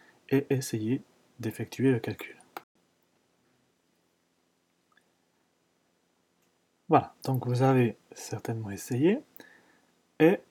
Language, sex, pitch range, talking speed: French, male, 105-135 Hz, 70 wpm